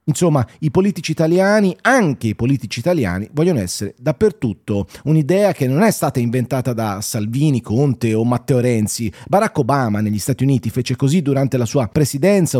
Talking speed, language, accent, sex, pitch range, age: 160 wpm, Italian, native, male, 120-165 Hz, 30-49